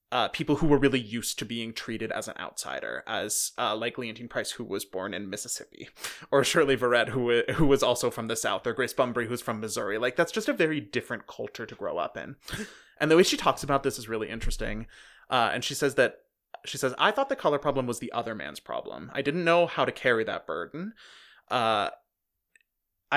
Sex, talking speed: male, 220 wpm